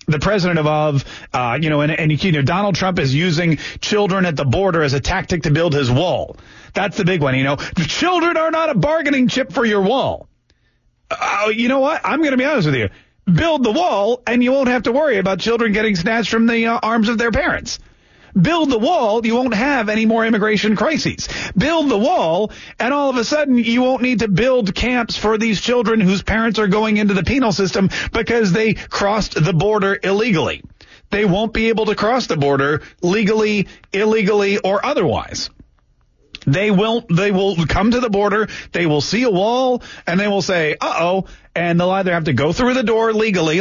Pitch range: 165-230 Hz